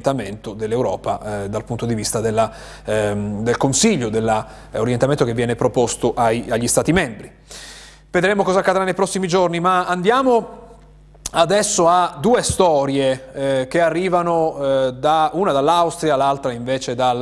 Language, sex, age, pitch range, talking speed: Italian, male, 30-49, 130-175 Hz, 145 wpm